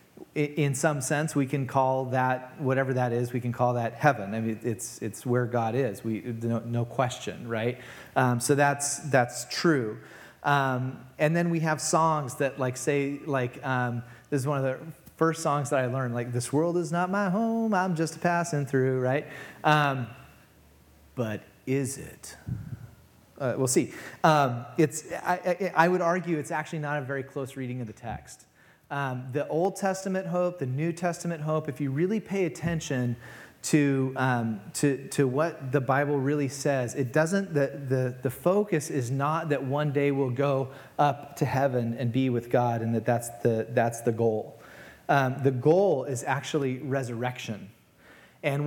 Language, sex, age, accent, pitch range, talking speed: English, male, 30-49, American, 125-155 Hz, 180 wpm